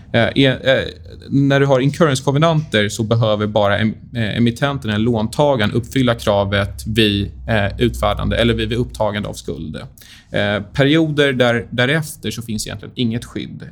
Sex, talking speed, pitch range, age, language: male, 150 wpm, 105-130 Hz, 20-39, Swedish